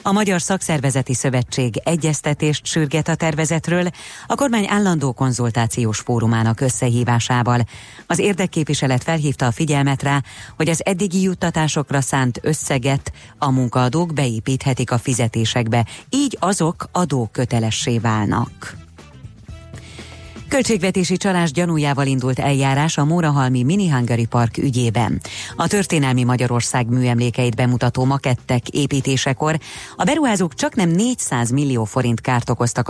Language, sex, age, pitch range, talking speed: Hungarian, female, 30-49, 120-160 Hz, 115 wpm